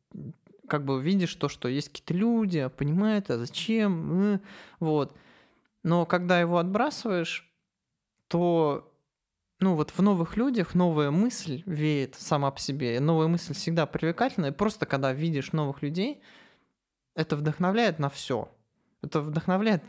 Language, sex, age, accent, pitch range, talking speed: Russian, male, 20-39, native, 140-180 Hz, 135 wpm